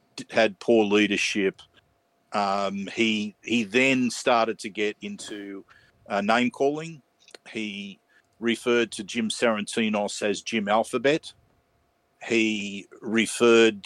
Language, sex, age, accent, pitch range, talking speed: English, male, 50-69, Australian, 105-120 Hz, 105 wpm